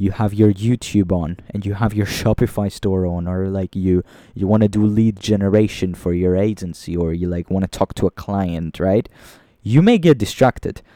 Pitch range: 95-130 Hz